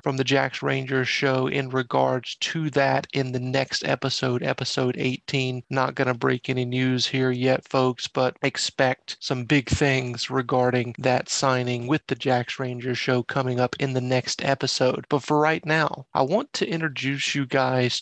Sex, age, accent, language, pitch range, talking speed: male, 30-49, American, English, 125-140 Hz, 175 wpm